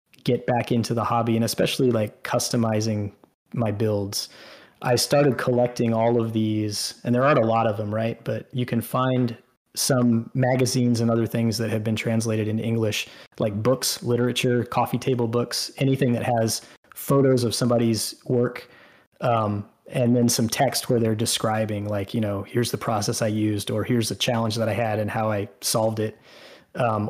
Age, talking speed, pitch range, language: 20-39, 180 wpm, 110-125 Hz, English